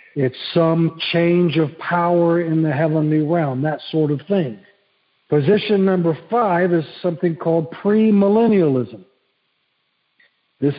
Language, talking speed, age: English, 115 wpm, 60-79